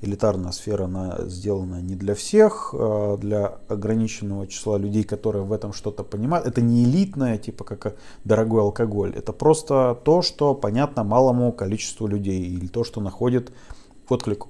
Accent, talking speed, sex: native, 150 wpm, male